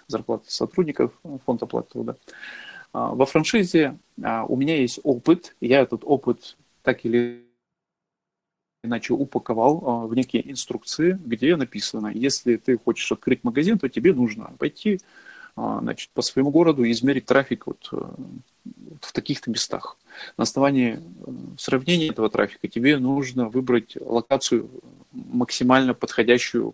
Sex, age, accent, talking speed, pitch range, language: male, 30-49, native, 115 wpm, 120-140 Hz, Russian